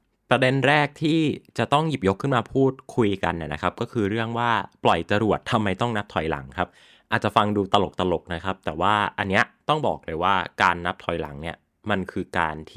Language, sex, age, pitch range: Thai, male, 20-39, 90-115 Hz